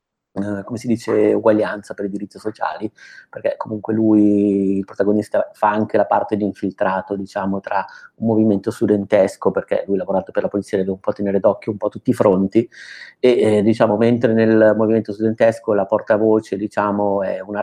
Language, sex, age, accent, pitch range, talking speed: Italian, male, 30-49, native, 105-115 Hz, 185 wpm